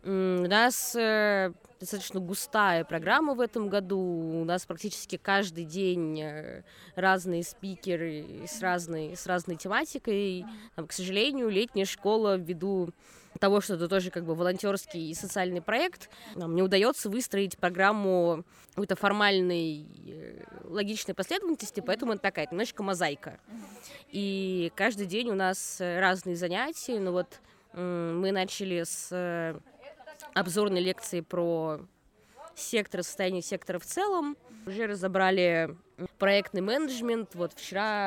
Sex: female